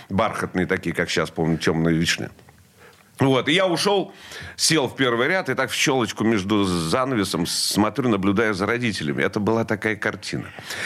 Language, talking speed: Russian, 160 wpm